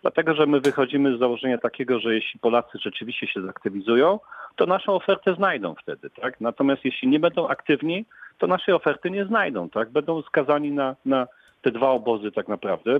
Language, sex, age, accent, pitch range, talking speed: Polish, male, 40-59, native, 115-175 Hz, 180 wpm